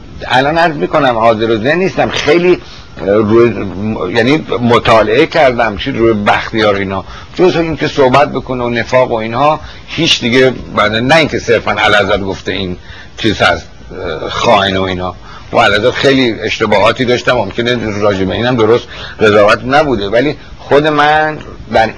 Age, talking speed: 60-79, 150 wpm